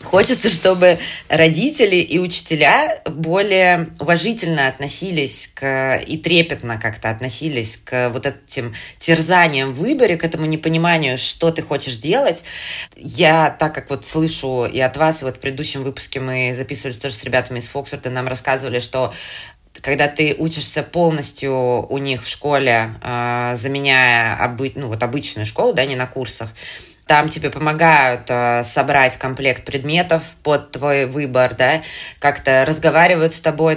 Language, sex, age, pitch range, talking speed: Russian, female, 20-39, 130-160 Hz, 145 wpm